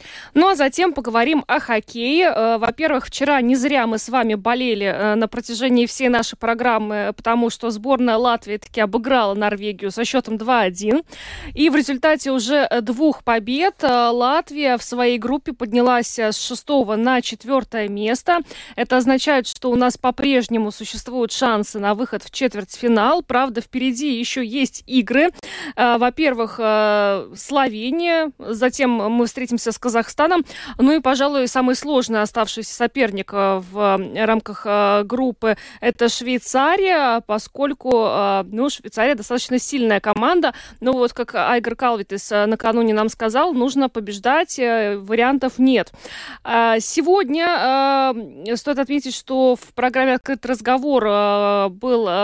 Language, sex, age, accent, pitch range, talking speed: Russian, female, 20-39, native, 225-270 Hz, 125 wpm